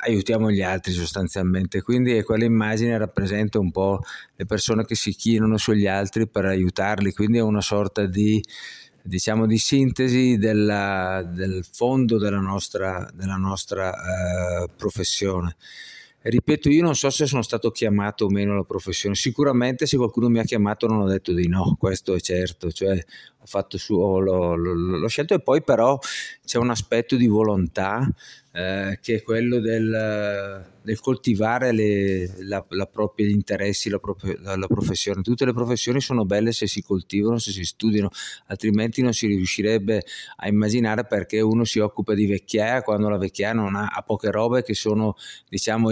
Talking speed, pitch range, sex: 170 wpm, 100-115 Hz, male